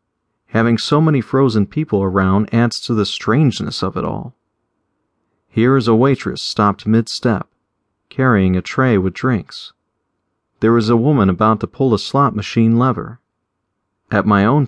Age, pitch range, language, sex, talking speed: 40-59, 100-130 Hz, English, male, 155 wpm